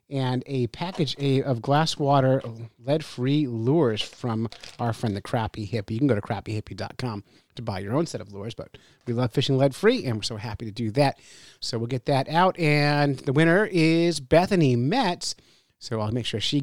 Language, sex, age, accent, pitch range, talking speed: English, male, 30-49, American, 120-160 Hz, 195 wpm